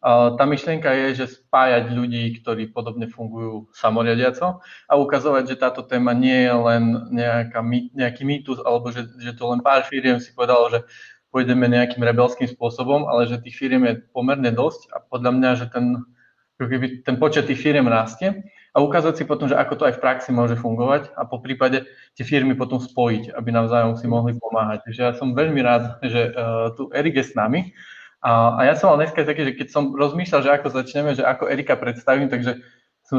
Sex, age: male, 20-39